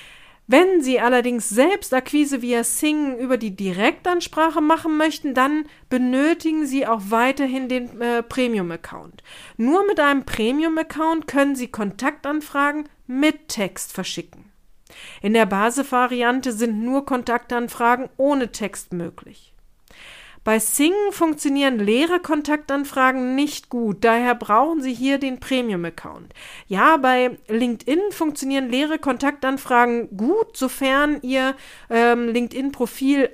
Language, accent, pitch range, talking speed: German, German, 230-285 Hz, 115 wpm